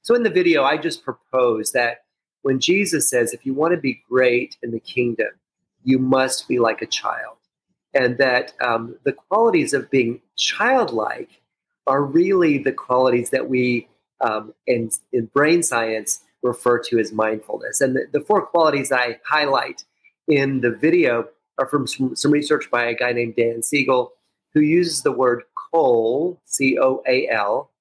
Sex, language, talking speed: male, English, 165 wpm